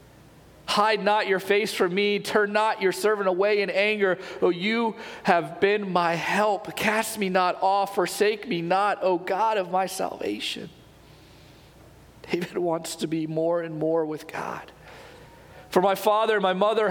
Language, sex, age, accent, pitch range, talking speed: English, male, 40-59, American, 170-205 Hz, 165 wpm